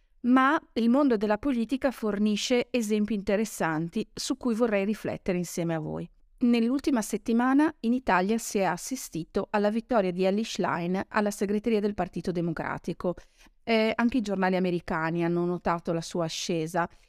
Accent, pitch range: native, 175-220 Hz